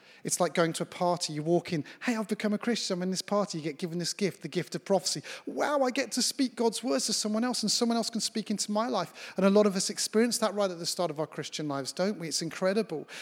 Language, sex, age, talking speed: English, male, 30-49, 290 wpm